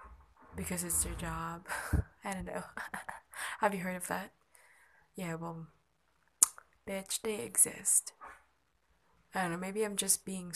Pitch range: 155-205 Hz